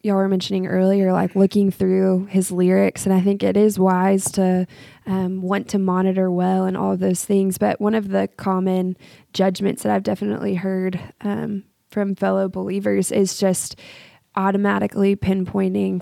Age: 20-39